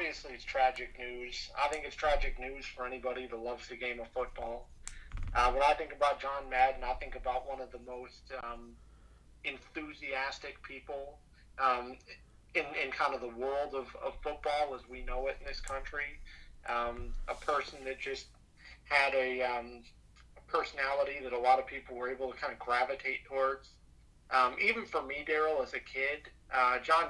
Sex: male